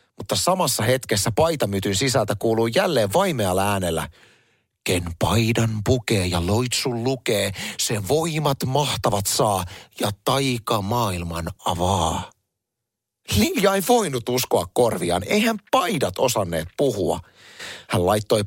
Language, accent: Finnish, native